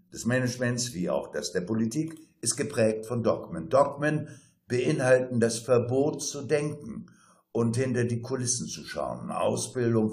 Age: 60-79